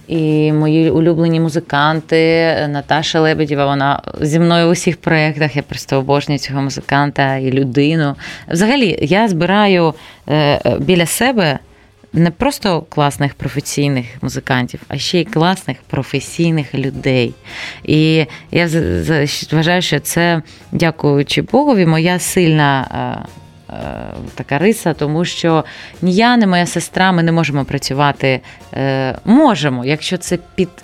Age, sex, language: 20-39, female, Ukrainian